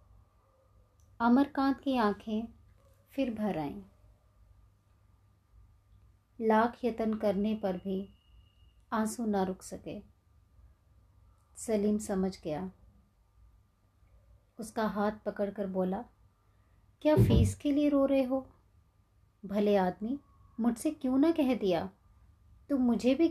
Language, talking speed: Hindi, 100 wpm